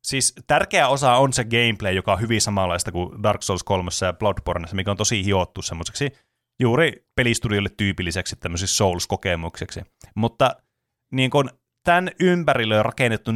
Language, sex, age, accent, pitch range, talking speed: Finnish, male, 30-49, native, 100-135 Hz, 150 wpm